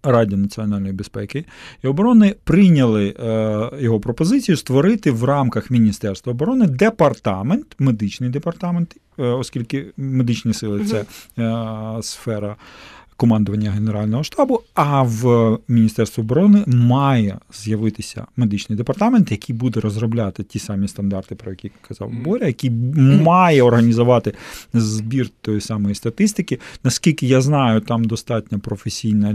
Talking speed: 120 wpm